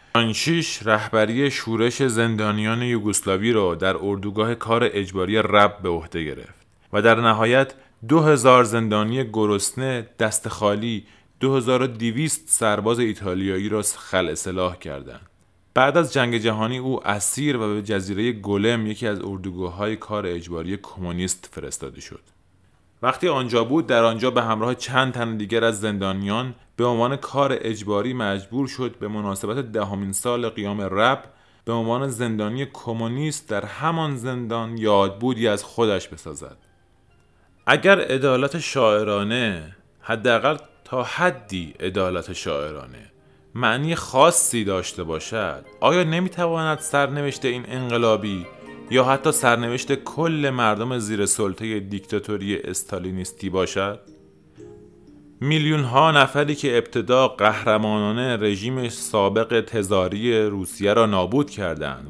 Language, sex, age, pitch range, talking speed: Persian, male, 30-49, 100-125 Hz, 120 wpm